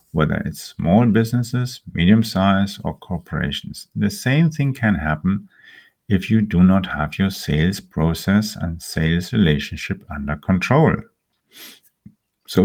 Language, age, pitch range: English, 50-69, 80-105 Hz